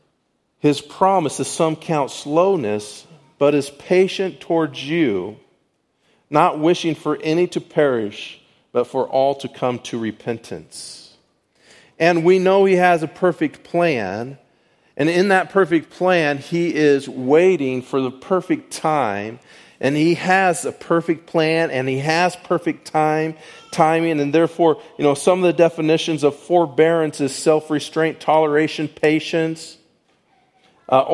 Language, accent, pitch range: English, American, 135-170 Hz